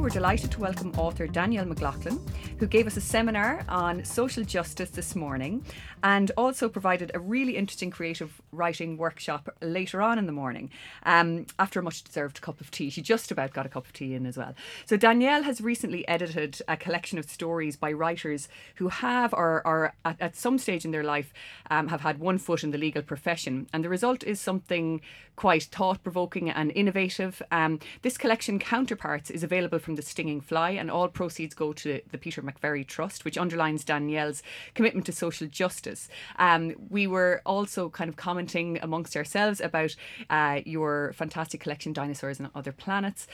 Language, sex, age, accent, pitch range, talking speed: English, female, 30-49, Irish, 155-190 Hz, 185 wpm